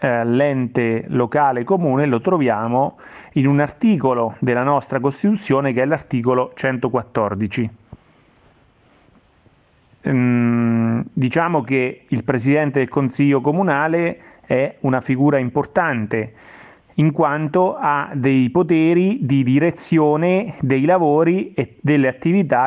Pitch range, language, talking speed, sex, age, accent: 125-150 Hz, Italian, 105 wpm, male, 30-49, native